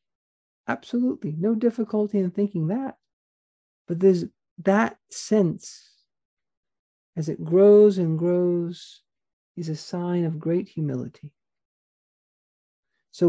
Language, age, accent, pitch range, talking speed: English, 50-69, American, 165-215 Hz, 100 wpm